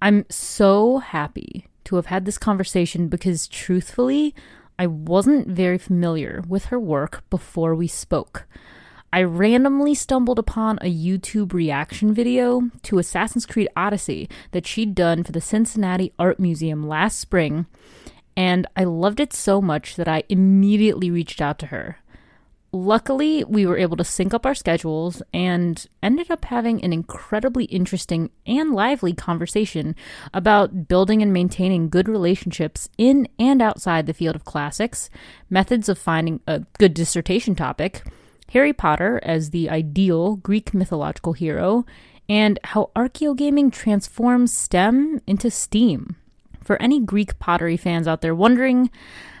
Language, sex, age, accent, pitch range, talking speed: English, female, 30-49, American, 170-225 Hz, 140 wpm